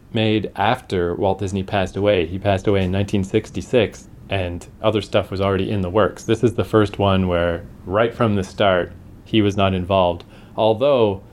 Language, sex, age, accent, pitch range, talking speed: English, male, 30-49, American, 90-110 Hz, 180 wpm